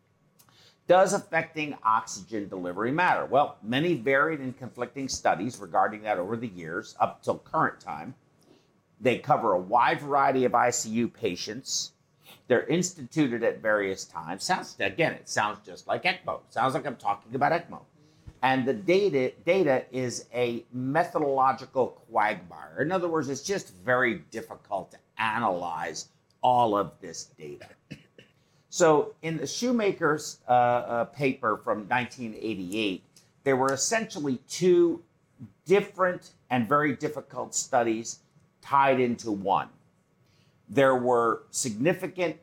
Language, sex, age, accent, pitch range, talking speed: English, male, 50-69, American, 125-160 Hz, 130 wpm